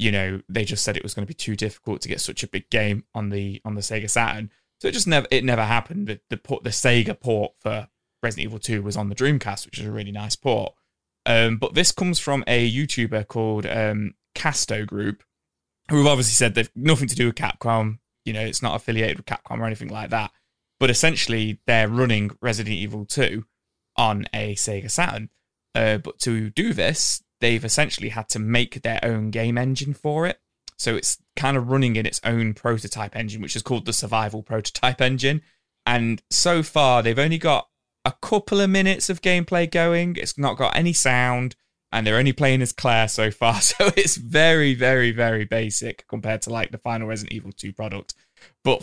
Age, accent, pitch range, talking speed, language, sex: 20-39, British, 110-135 Hz, 210 wpm, English, male